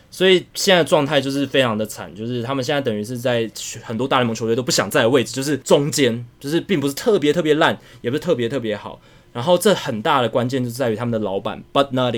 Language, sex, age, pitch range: Chinese, male, 20-39, 115-150 Hz